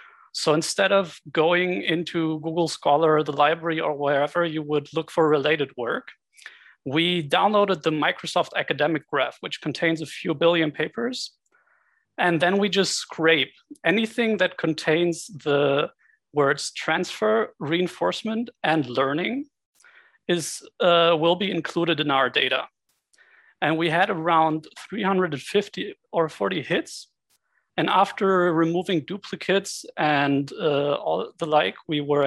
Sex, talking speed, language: male, 130 wpm, English